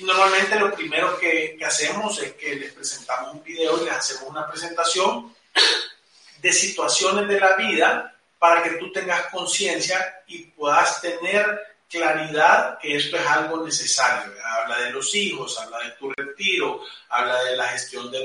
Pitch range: 160-205 Hz